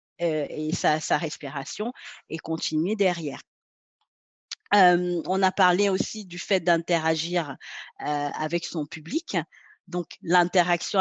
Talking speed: 115 wpm